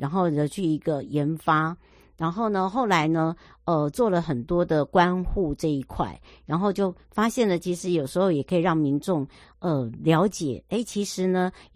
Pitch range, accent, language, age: 145-185 Hz, American, Chinese, 60-79